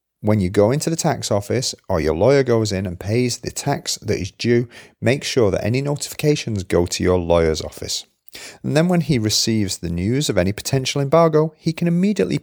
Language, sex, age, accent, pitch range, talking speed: English, male, 40-59, British, 90-140 Hz, 210 wpm